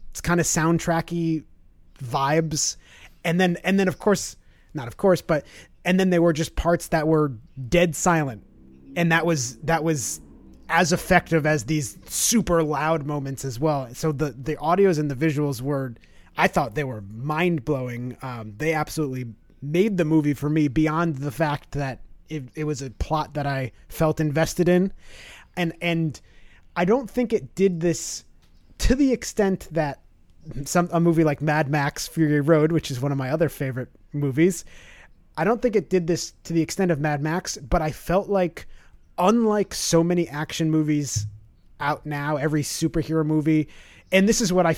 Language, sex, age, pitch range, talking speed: English, male, 30-49, 140-170 Hz, 180 wpm